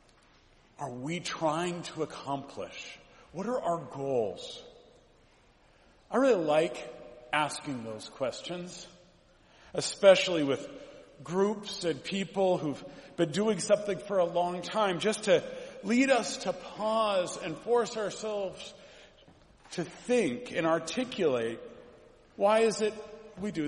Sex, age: male, 40-59